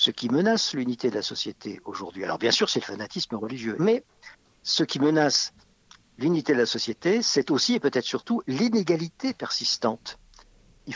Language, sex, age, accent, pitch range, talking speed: French, male, 50-69, French, 115-175 Hz, 170 wpm